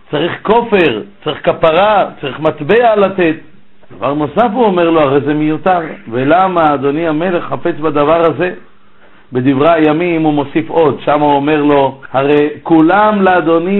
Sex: male